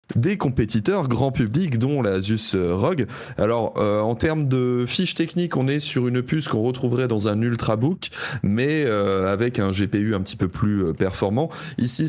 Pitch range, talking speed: 100-130 Hz, 175 wpm